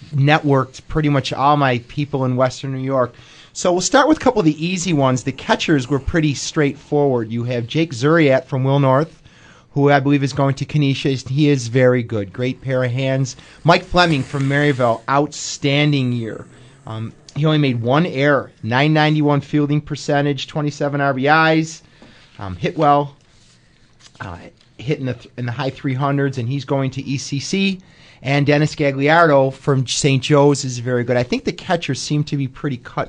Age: 30-49